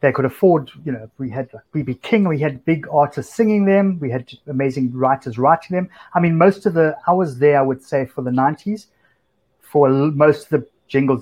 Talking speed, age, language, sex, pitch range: 215 wpm, 30-49, English, male, 125-145 Hz